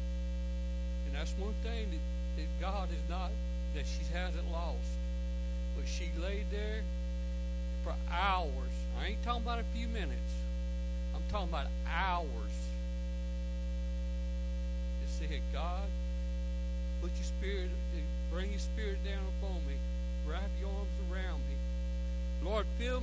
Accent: American